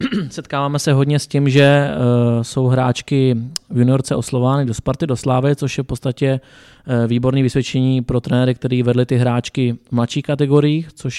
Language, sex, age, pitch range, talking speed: Czech, male, 20-39, 120-130 Hz, 165 wpm